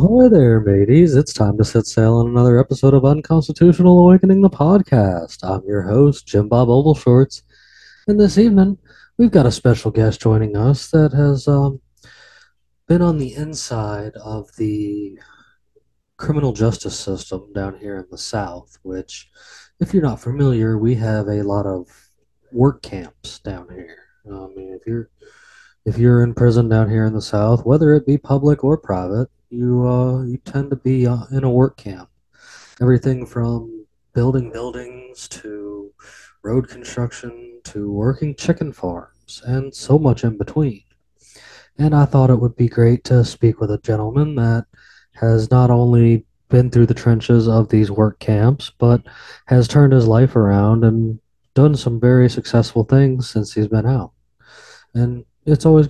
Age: 20-39